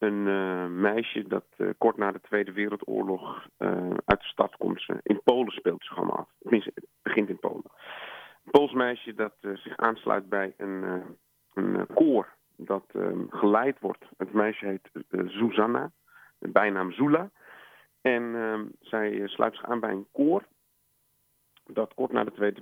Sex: male